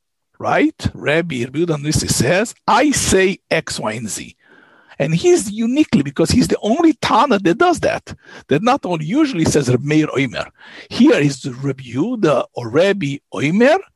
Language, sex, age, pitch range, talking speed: English, male, 50-69, 140-215 Hz, 150 wpm